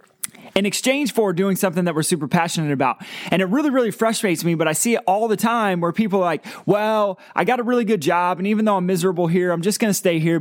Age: 20-39